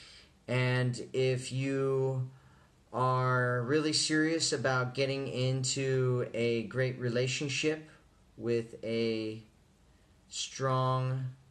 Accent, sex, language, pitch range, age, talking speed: American, male, English, 110-130 Hz, 30-49, 80 wpm